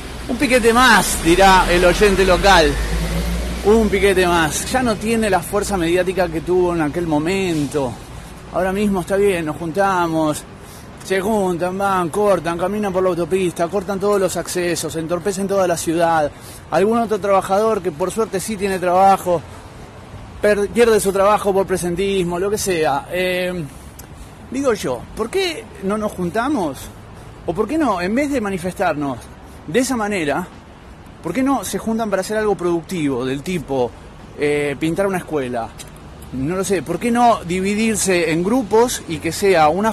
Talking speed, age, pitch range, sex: 160 wpm, 30-49, 165-205 Hz, male